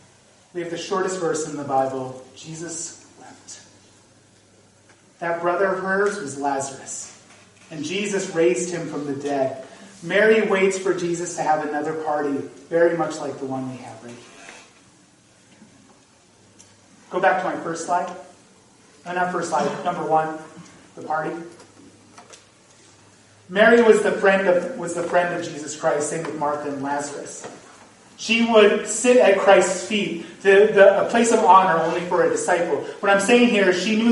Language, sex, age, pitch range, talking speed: English, male, 30-49, 155-200 Hz, 155 wpm